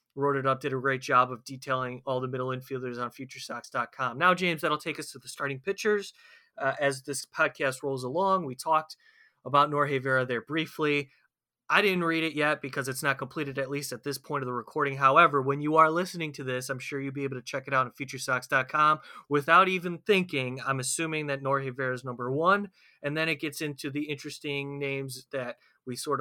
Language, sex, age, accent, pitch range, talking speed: English, male, 30-49, American, 135-155 Hz, 215 wpm